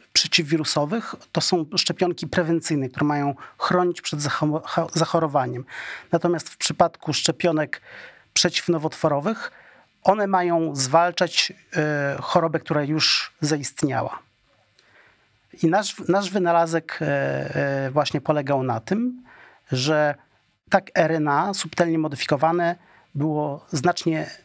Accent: native